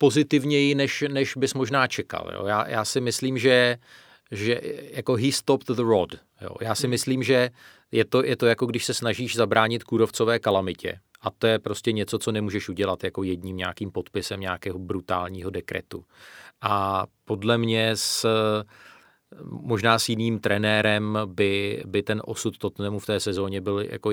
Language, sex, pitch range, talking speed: Czech, male, 95-110 Hz, 165 wpm